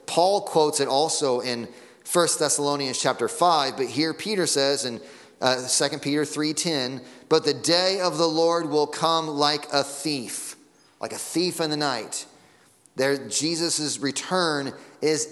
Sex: male